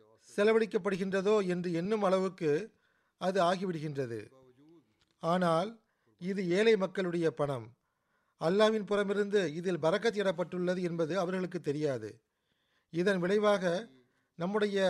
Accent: native